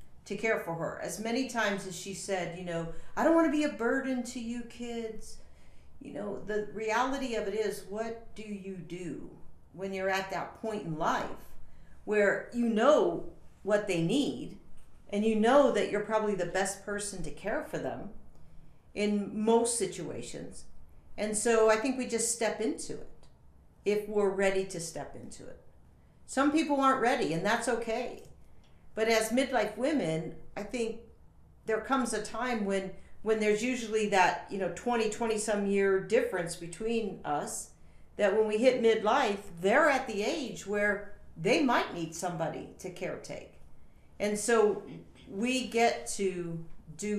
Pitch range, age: 190-230 Hz, 50-69